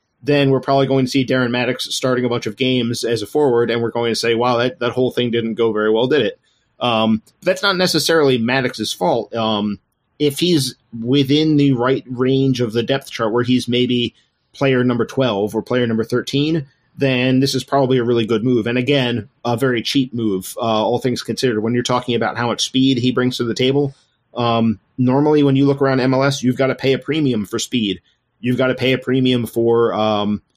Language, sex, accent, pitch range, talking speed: English, male, American, 115-135 Hz, 220 wpm